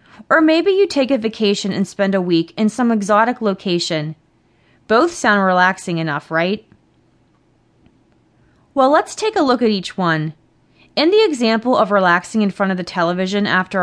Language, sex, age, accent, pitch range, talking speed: English, female, 30-49, American, 190-265 Hz, 165 wpm